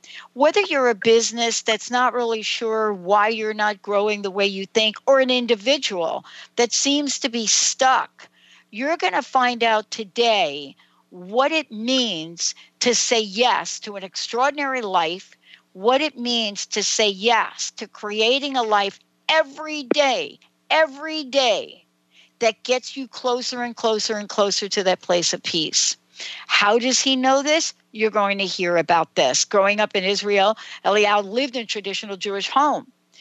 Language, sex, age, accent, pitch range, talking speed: English, female, 60-79, American, 205-265 Hz, 160 wpm